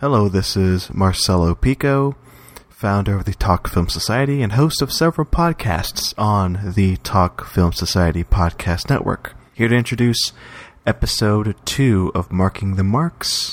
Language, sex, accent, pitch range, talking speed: English, male, American, 90-115 Hz, 140 wpm